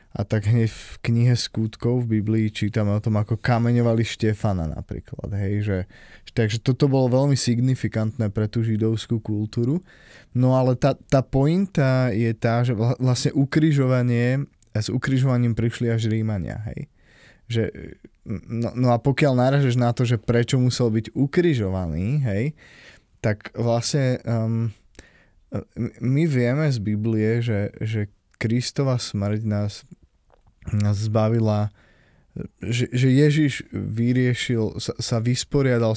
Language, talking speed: Slovak, 125 wpm